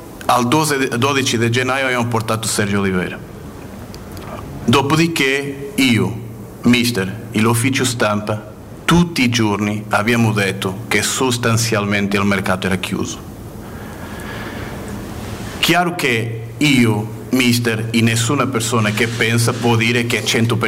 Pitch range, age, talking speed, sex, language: 105-120 Hz, 40-59, 115 wpm, male, Italian